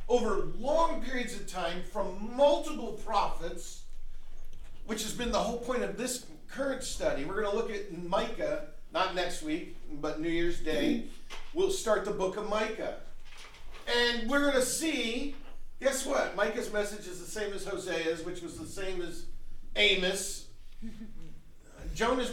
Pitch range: 170-240 Hz